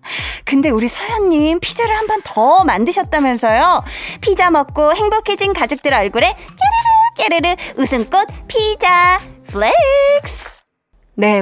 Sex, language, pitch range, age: female, Korean, 195-315 Hz, 20-39